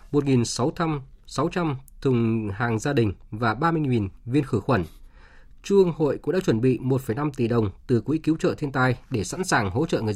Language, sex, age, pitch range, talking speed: Vietnamese, male, 20-39, 115-155 Hz, 185 wpm